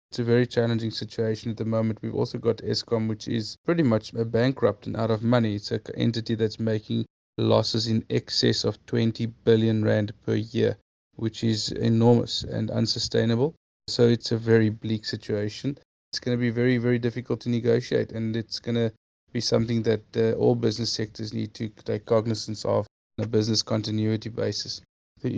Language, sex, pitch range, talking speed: English, male, 110-115 Hz, 175 wpm